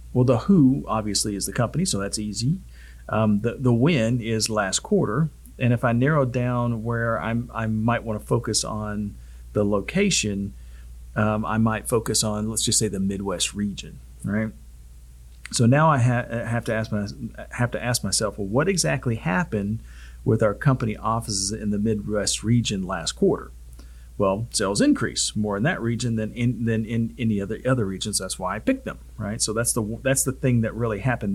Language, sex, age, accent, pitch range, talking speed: English, male, 40-59, American, 100-125 Hz, 185 wpm